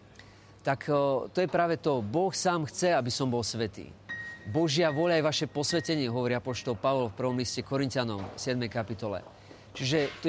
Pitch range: 115-145 Hz